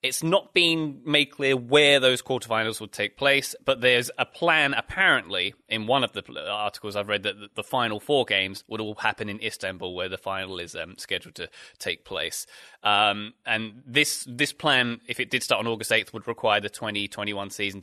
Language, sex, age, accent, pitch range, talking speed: English, male, 20-39, British, 110-145 Hz, 200 wpm